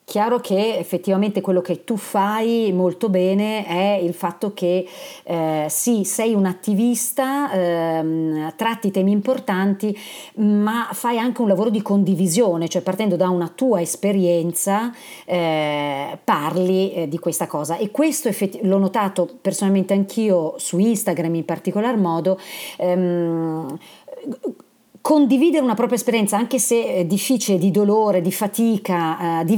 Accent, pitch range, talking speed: native, 180-225 Hz, 135 wpm